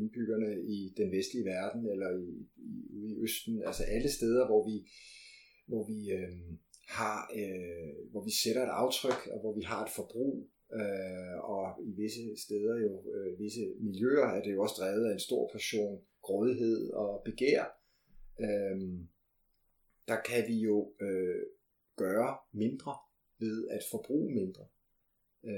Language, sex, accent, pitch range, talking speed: Danish, male, native, 100-125 Hz, 130 wpm